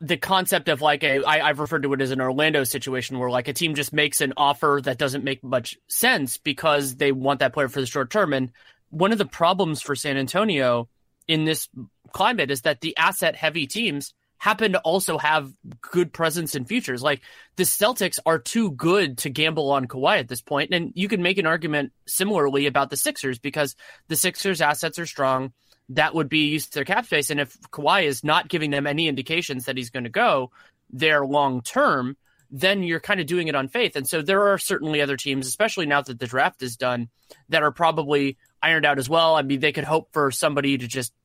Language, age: English, 30-49